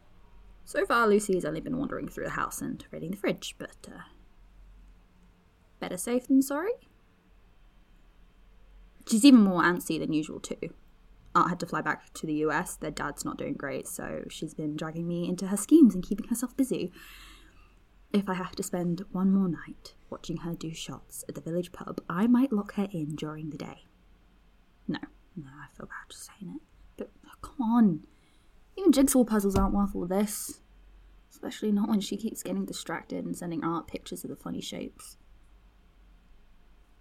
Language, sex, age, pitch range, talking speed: English, female, 10-29, 145-215 Hz, 175 wpm